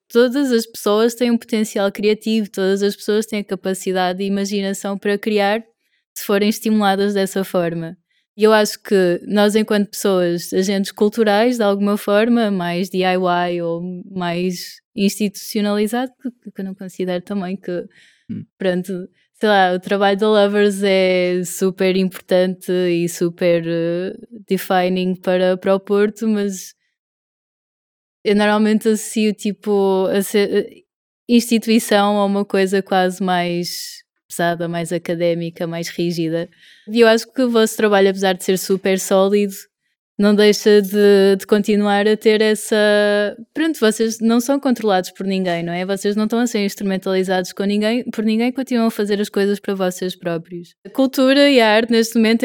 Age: 20-39